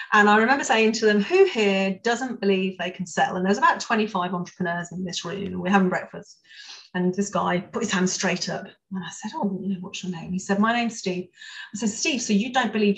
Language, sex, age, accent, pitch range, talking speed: English, female, 30-49, British, 190-245 Hz, 235 wpm